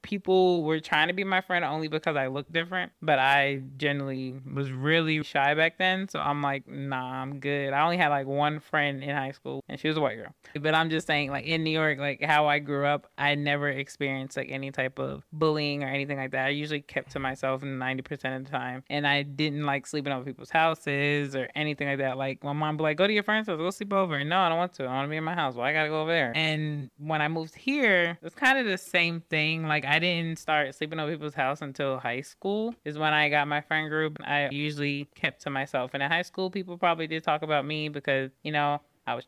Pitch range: 135-160 Hz